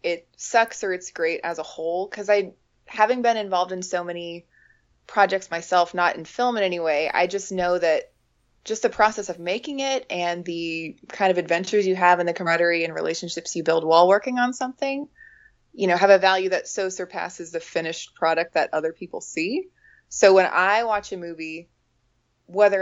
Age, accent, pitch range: 20-39, American, 170-230 Hz